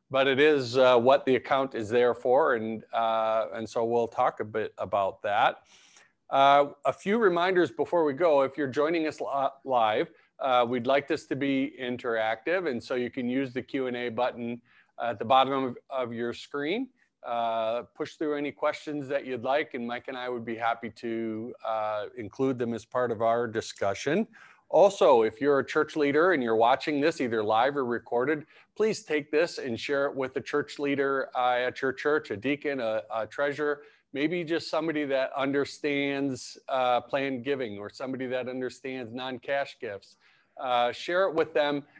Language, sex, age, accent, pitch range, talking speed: English, male, 40-59, American, 120-140 Hz, 185 wpm